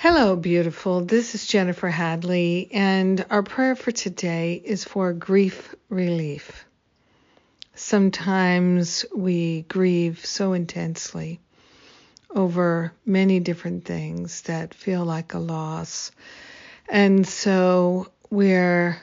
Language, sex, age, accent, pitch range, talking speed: English, female, 50-69, American, 170-195 Hz, 100 wpm